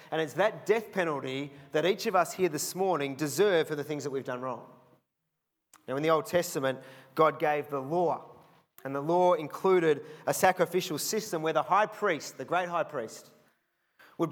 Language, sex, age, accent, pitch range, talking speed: English, male, 30-49, Australian, 155-205 Hz, 190 wpm